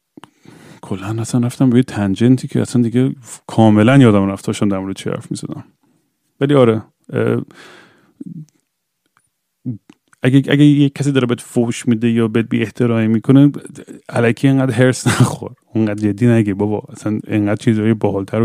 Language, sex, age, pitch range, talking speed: Persian, male, 30-49, 105-130 Hz, 145 wpm